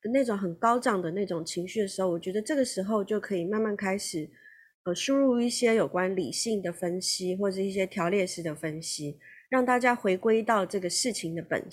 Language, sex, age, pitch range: Chinese, female, 30-49, 175-235 Hz